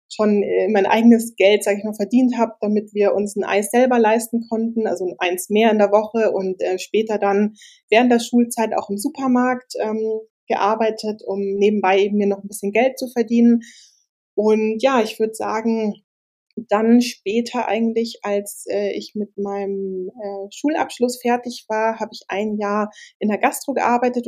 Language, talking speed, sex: German, 175 wpm, female